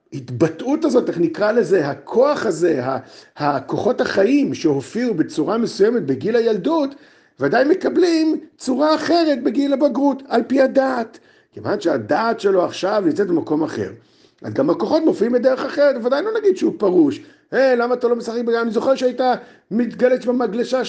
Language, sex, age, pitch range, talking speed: Hebrew, male, 50-69, 220-315 Hz, 155 wpm